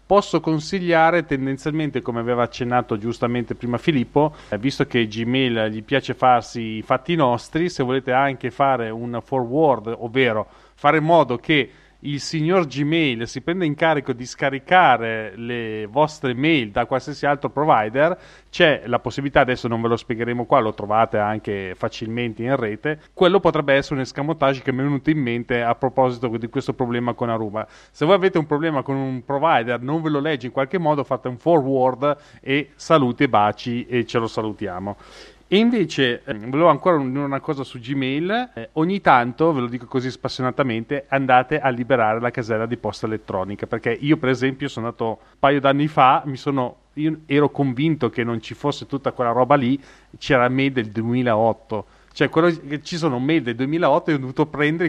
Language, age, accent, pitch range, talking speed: Italian, 30-49, native, 120-150 Hz, 185 wpm